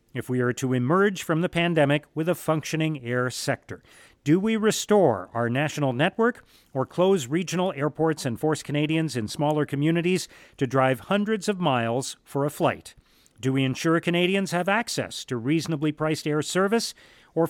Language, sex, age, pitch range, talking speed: English, male, 40-59, 140-185 Hz, 170 wpm